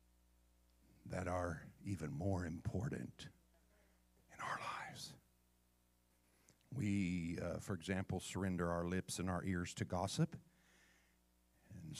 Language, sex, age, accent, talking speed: English, male, 50-69, American, 105 wpm